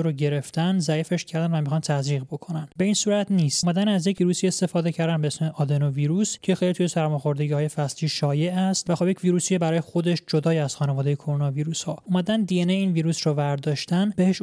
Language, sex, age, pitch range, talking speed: Persian, male, 20-39, 150-175 Hz, 200 wpm